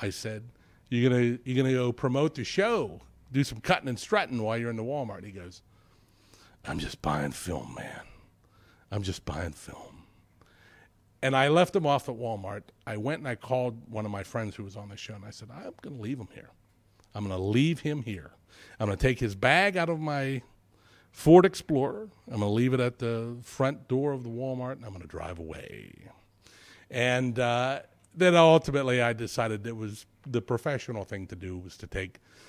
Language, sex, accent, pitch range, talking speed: English, male, American, 100-130 Hz, 200 wpm